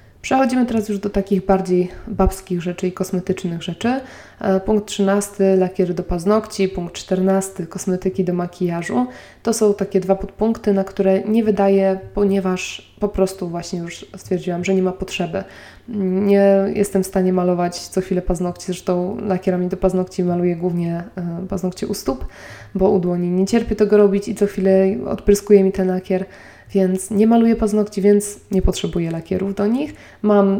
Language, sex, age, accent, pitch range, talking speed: Polish, female, 20-39, native, 180-200 Hz, 160 wpm